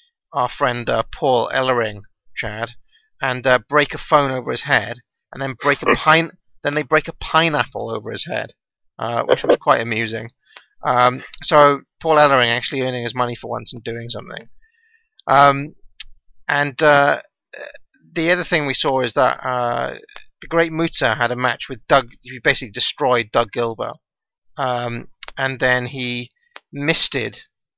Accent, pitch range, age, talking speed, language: British, 120-150 Hz, 30-49, 160 wpm, English